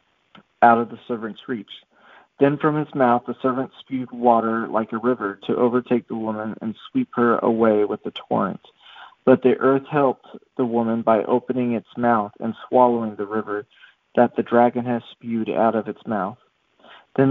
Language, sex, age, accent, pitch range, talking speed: English, male, 40-59, American, 110-130 Hz, 175 wpm